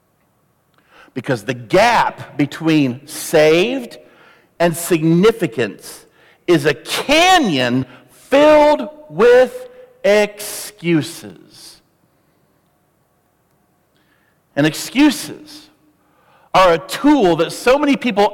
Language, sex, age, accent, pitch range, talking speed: English, male, 50-69, American, 160-245 Hz, 70 wpm